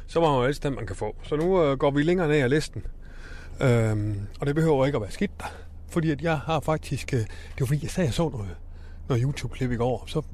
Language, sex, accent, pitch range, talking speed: Danish, male, native, 95-150 Hz, 250 wpm